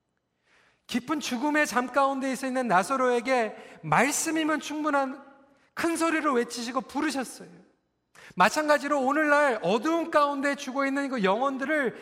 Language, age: Korean, 40-59